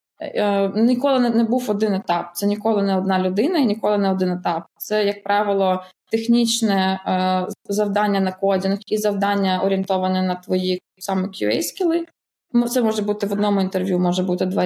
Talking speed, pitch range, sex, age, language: 160 wpm, 185-225 Hz, female, 20-39, Ukrainian